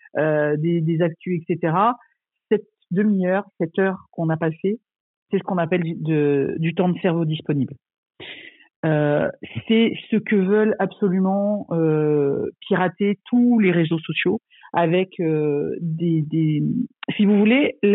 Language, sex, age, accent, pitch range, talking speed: French, female, 50-69, French, 170-220 Hz, 145 wpm